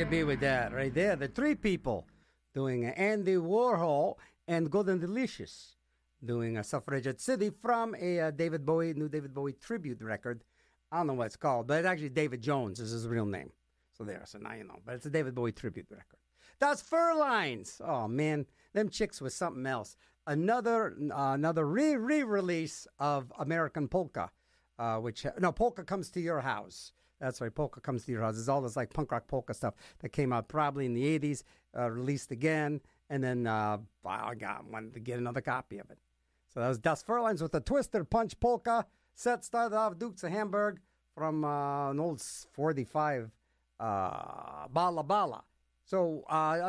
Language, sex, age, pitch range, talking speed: English, male, 50-69, 125-195 Hz, 190 wpm